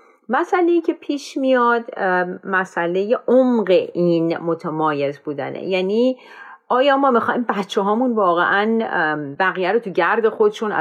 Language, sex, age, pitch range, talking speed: Persian, female, 40-59, 185-250 Hz, 115 wpm